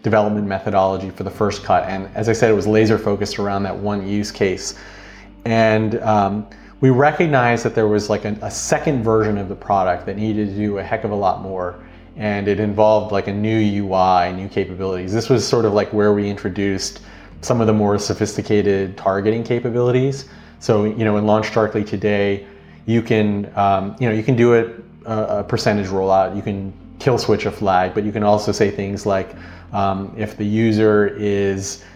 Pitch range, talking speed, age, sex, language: 95-110 Hz, 190 wpm, 30-49, male, English